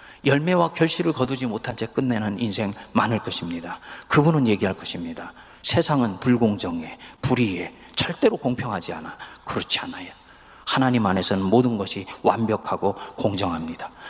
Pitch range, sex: 100-140 Hz, male